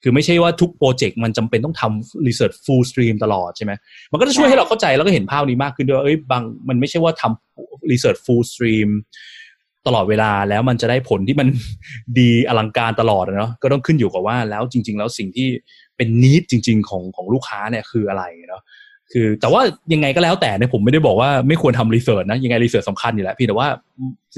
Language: Thai